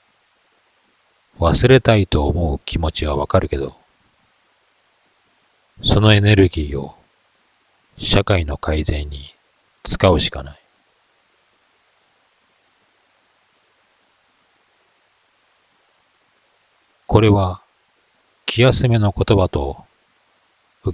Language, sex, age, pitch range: Japanese, male, 40-59, 75-100 Hz